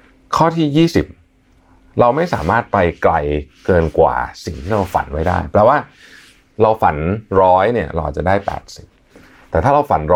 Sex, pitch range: male, 75-105 Hz